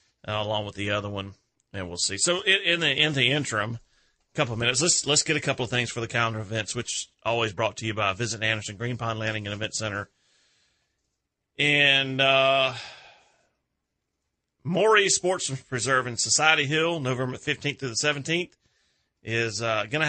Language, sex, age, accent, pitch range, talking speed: English, male, 30-49, American, 110-140 Hz, 180 wpm